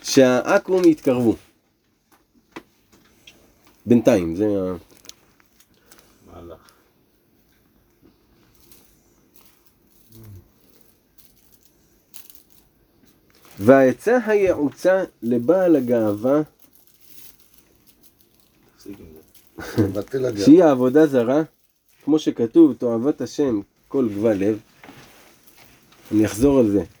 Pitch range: 105-155 Hz